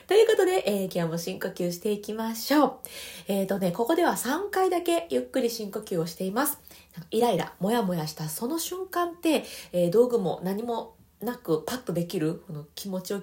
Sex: female